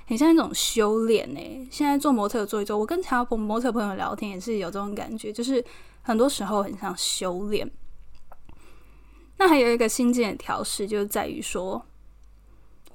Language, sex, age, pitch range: Chinese, female, 10-29, 210-255 Hz